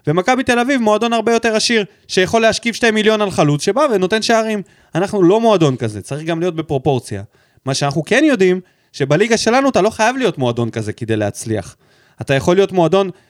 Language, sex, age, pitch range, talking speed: Hebrew, male, 20-39, 145-220 Hz, 190 wpm